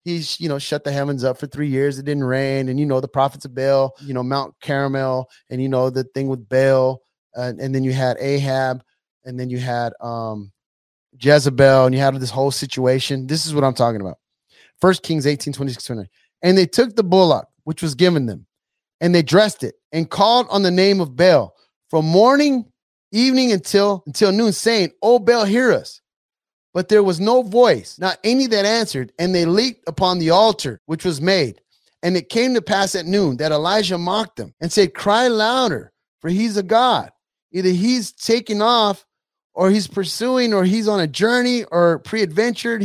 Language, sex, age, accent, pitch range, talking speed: English, male, 30-49, American, 140-210 Hz, 200 wpm